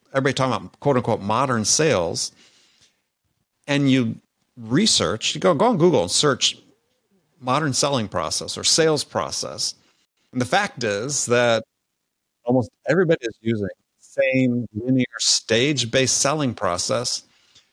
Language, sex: English, male